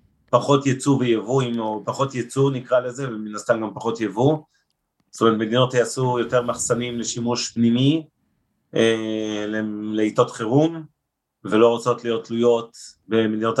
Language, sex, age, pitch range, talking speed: Hebrew, male, 30-49, 115-125 Hz, 130 wpm